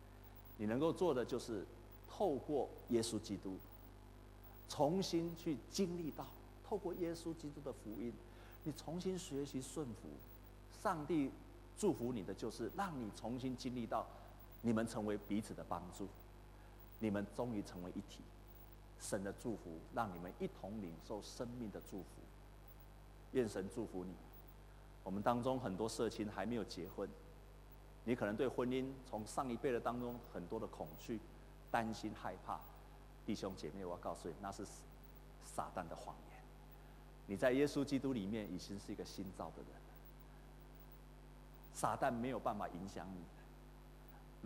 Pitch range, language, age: 100-130 Hz, Chinese, 50-69